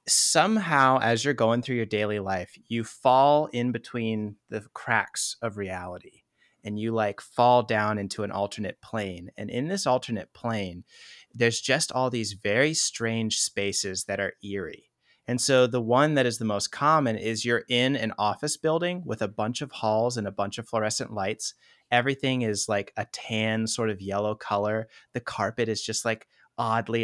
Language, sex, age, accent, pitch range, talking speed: English, male, 30-49, American, 105-130 Hz, 180 wpm